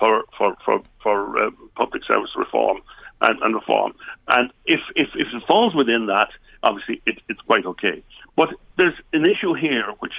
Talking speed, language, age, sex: 170 wpm, English, 60-79, male